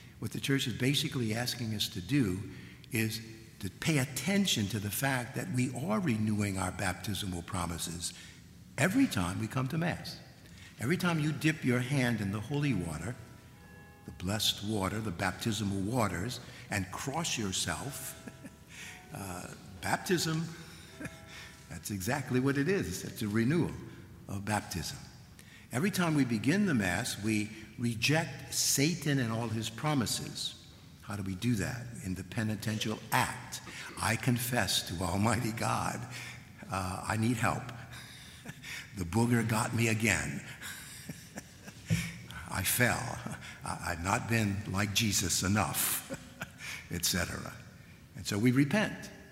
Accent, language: American, English